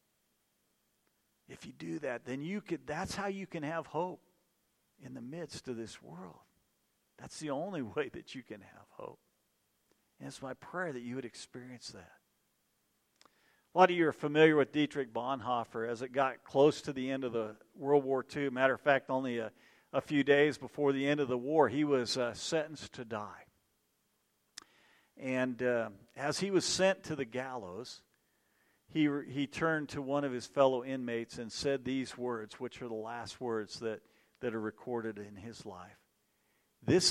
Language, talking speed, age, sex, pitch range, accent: English, 185 wpm, 50-69, male, 115-145 Hz, American